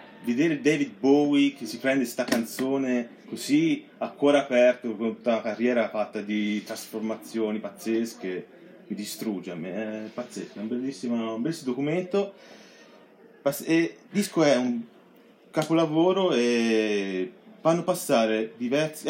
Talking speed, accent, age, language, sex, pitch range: 130 wpm, native, 30-49, Italian, male, 105-140 Hz